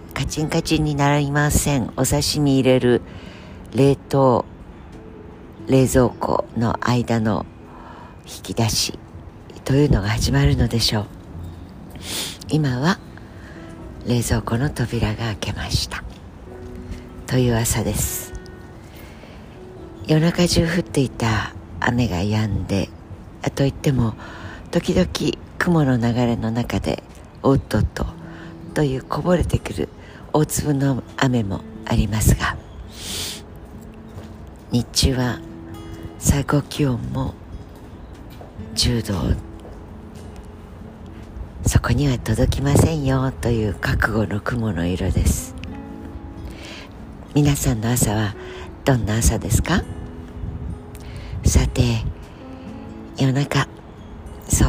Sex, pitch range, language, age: female, 90-130 Hz, Japanese, 60-79